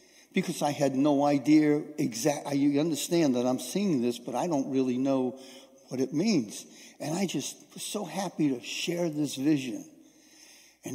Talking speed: 165 wpm